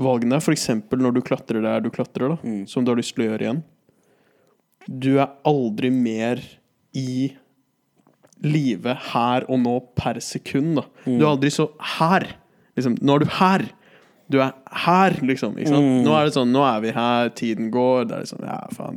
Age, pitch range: 20-39, 130-155 Hz